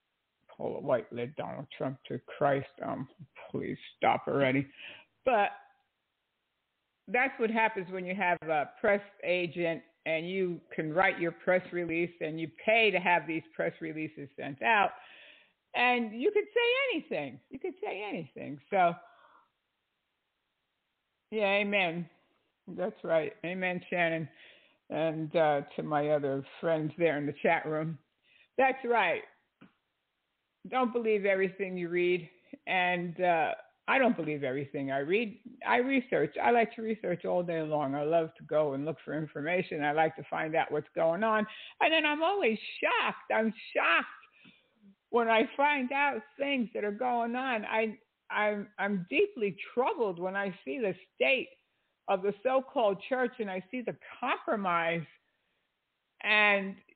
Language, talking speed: English, 145 wpm